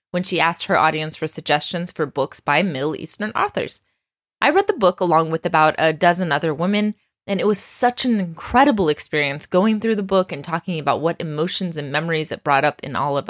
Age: 20-39